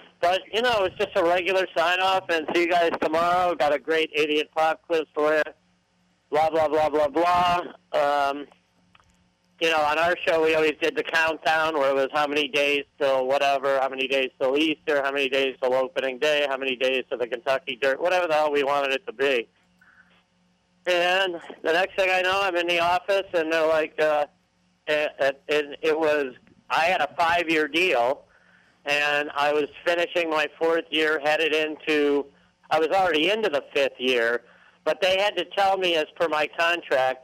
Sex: male